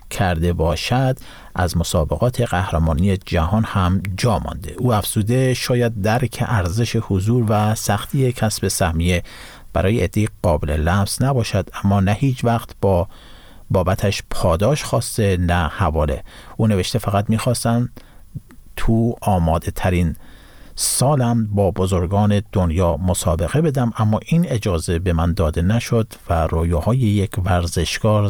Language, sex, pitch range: Persian, male, 90-115 Hz